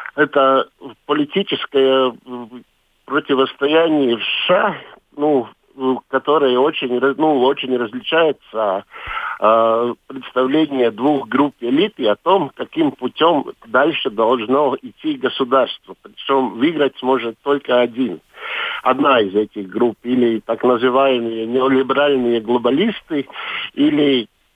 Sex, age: male, 50-69